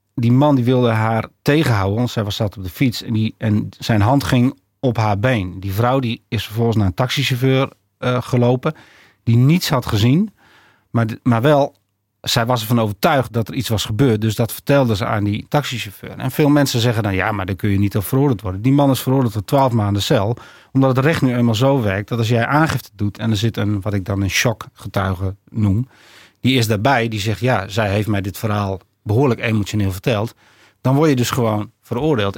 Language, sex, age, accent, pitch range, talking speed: Dutch, male, 40-59, Dutch, 105-130 Hz, 225 wpm